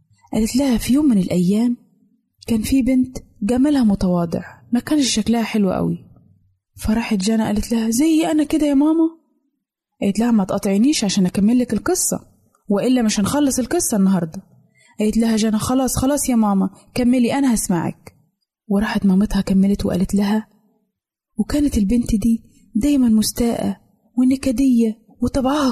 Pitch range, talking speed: 200-250 Hz, 140 wpm